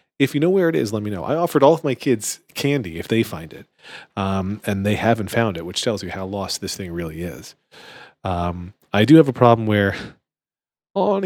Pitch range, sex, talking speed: 100-125 Hz, male, 230 wpm